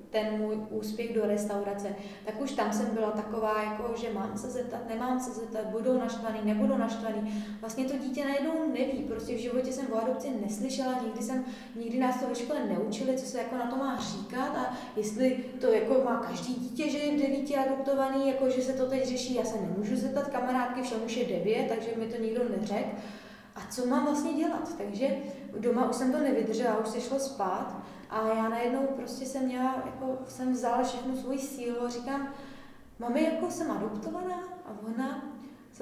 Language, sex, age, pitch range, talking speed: Slovak, female, 20-39, 225-265 Hz, 195 wpm